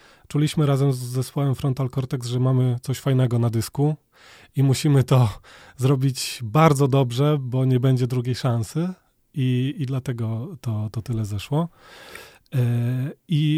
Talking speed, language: 135 wpm, Polish